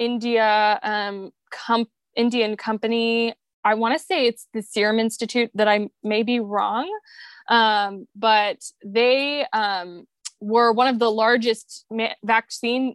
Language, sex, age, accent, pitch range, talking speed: English, female, 20-39, American, 215-260 Hz, 125 wpm